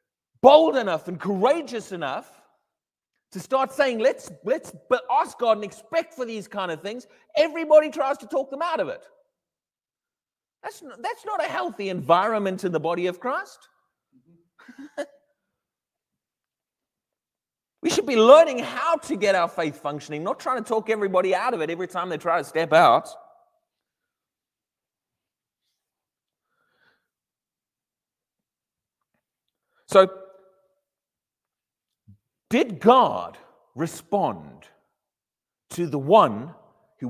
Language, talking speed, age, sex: English, 115 wpm, 40-59, male